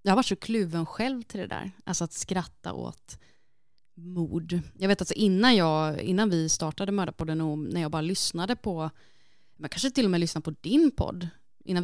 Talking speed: 195 wpm